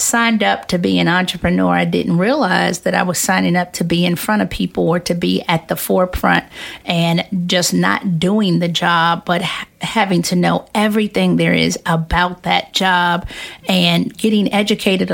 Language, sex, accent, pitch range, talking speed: English, female, American, 175-210 Hz, 180 wpm